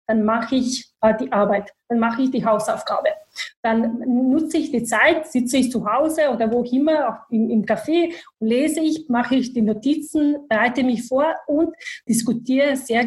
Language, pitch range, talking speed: German, 225-275 Hz, 180 wpm